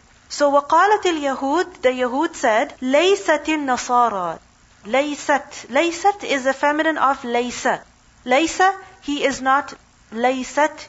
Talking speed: 110 wpm